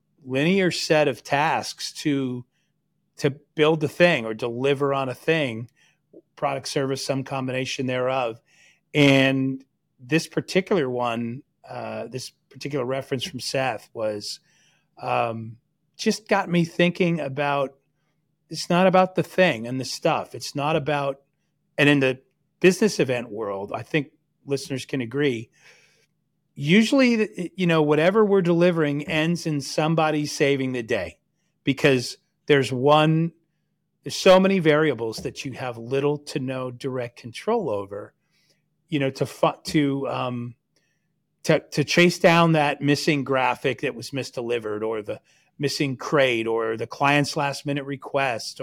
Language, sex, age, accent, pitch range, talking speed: English, male, 40-59, American, 135-160 Hz, 135 wpm